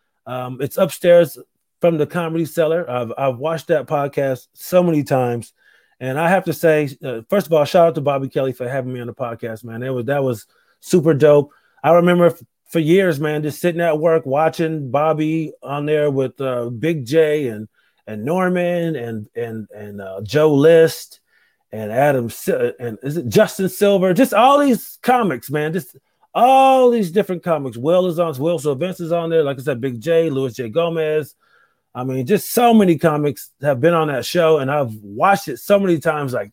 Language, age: English, 30-49